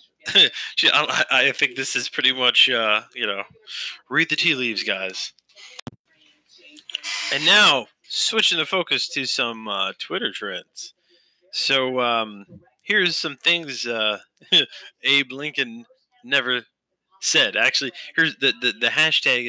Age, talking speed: 20-39, 125 wpm